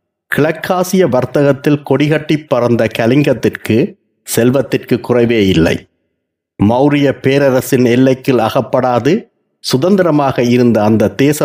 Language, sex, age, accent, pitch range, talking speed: Tamil, male, 60-79, native, 115-150 Hz, 85 wpm